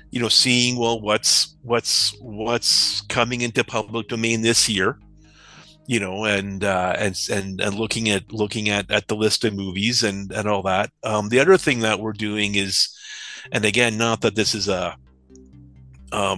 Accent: American